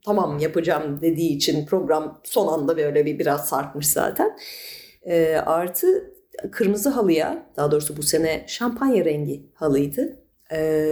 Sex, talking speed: female, 130 wpm